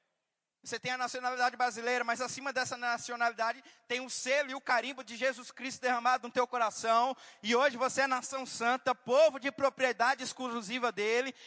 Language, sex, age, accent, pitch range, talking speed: Portuguese, male, 20-39, Brazilian, 245-280 Hz, 175 wpm